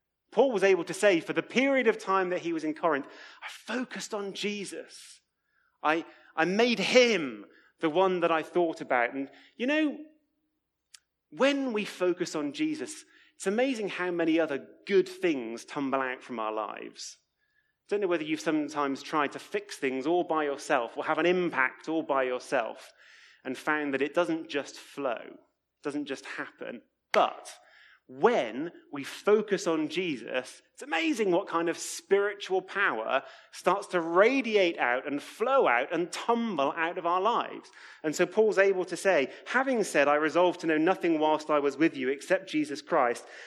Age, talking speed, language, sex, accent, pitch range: 30-49, 175 wpm, English, male, British, 150-210 Hz